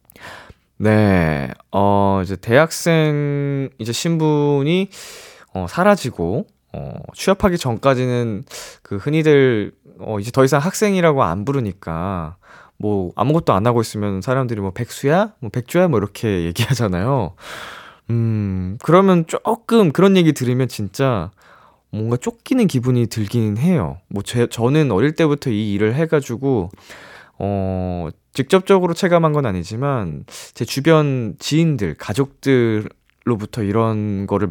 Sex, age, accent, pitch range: male, 20-39, native, 100-155 Hz